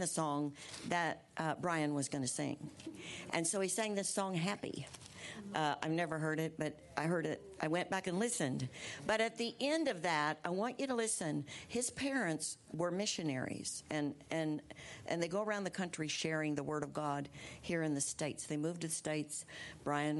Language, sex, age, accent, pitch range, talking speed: English, female, 60-79, American, 150-185 Hz, 200 wpm